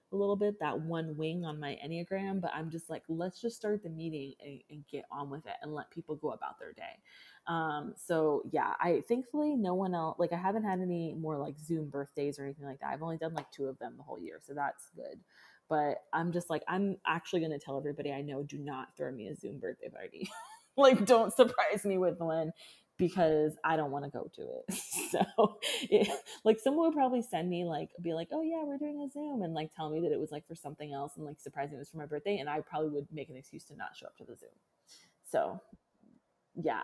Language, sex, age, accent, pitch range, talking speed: English, female, 20-39, American, 150-195 Hz, 245 wpm